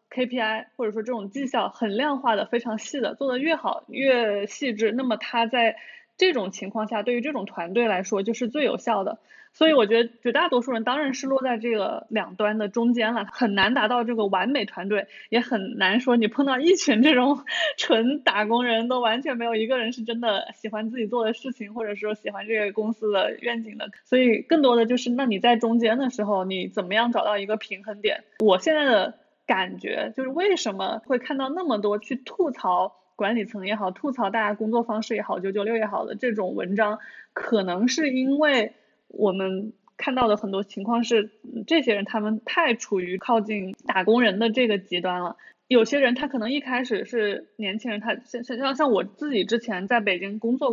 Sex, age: female, 20-39